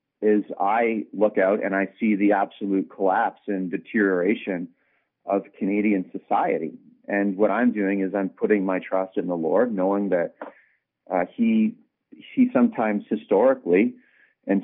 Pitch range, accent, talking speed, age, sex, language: 95-110 Hz, American, 145 wpm, 40-59, male, English